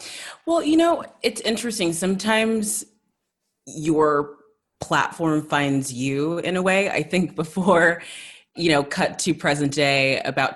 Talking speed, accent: 130 wpm, American